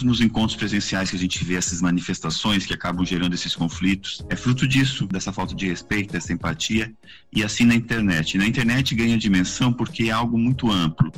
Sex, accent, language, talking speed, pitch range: male, Brazilian, Portuguese, 200 wpm, 90-115 Hz